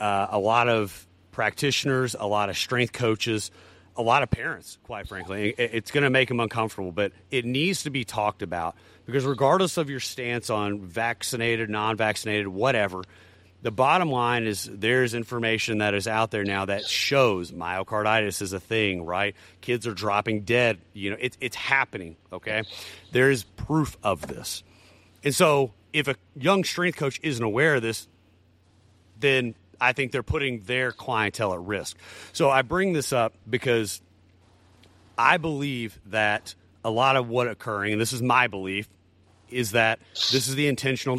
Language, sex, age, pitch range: English, male, 30-49, 95-125 Hz